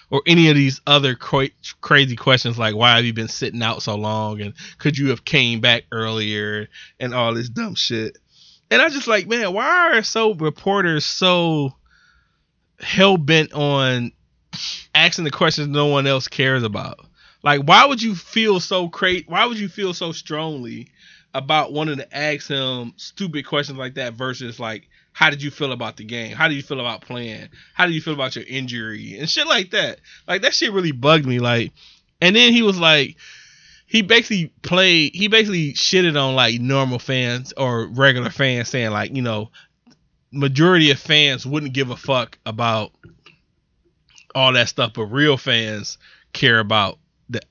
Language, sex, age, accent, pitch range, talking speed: English, male, 20-39, American, 120-160 Hz, 180 wpm